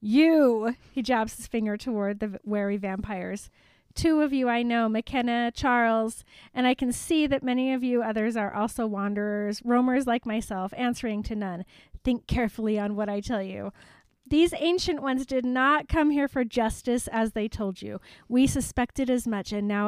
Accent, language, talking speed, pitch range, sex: American, English, 180 wpm, 210-260 Hz, female